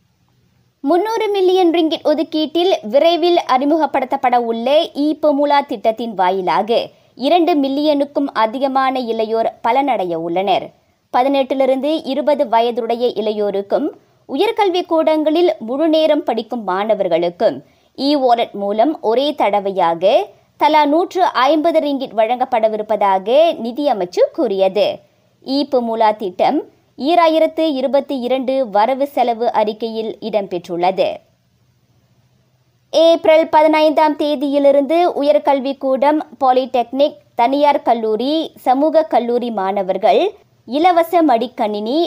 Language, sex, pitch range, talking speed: Tamil, male, 230-320 Hz, 80 wpm